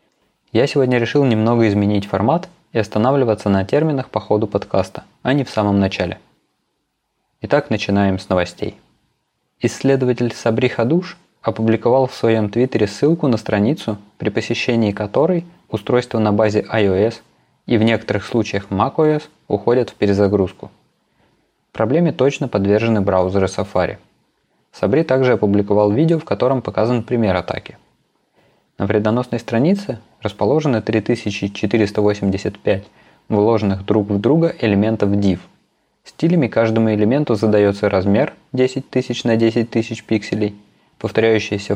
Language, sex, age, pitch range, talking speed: Russian, male, 20-39, 105-125 Hz, 120 wpm